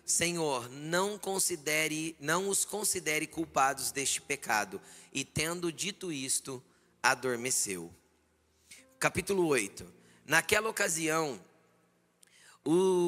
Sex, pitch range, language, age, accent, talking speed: male, 120-180 Hz, Portuguese, 20-39, Brazilian, 85 wpm